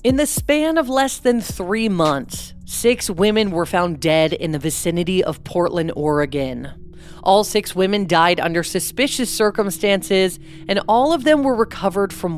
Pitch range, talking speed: 155-220 Hz, 160 wpm